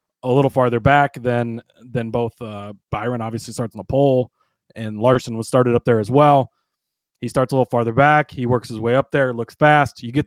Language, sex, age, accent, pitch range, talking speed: English, male, 30-49, American, 115-140 Hz, 220 wpm